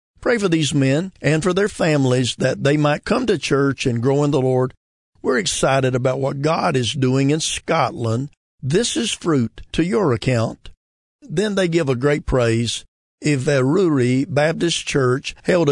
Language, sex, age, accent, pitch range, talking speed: English, male, 50-69, American, 125-160 Hz, 170 wpm